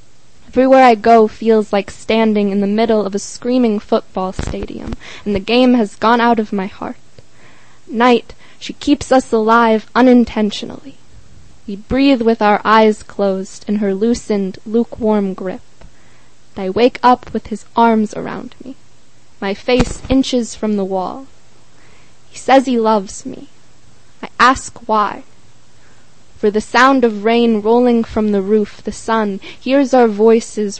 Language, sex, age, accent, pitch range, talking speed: English, female, 10-29, American, 205-245 Hz, 150 wpm